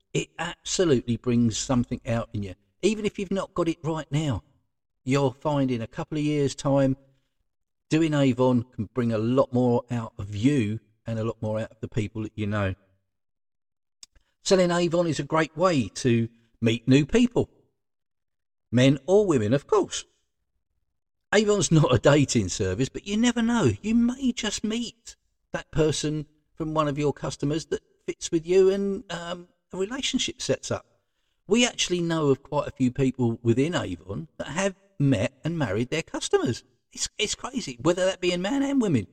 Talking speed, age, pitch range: 180 wpm, 50-69, 115-175 Hz